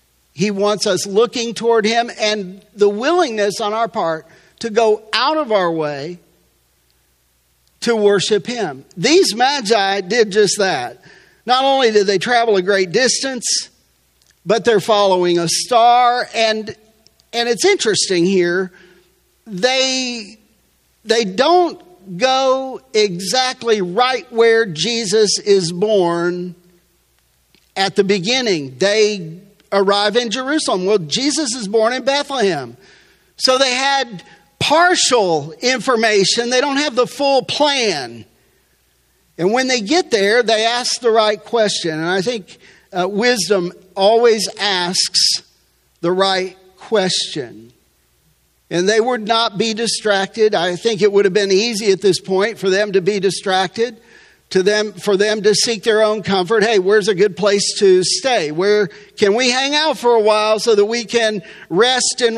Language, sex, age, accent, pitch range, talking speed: English, male, 50-69, American, 190-240 Hz, 145 wpm